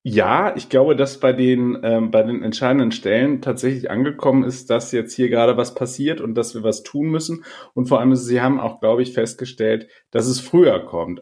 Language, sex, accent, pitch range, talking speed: German, male, German, 110-135 Hz, 210 wpm